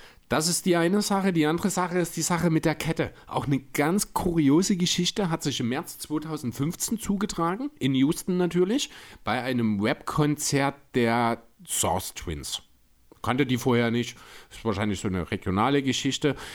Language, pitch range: German, 105-150 Hz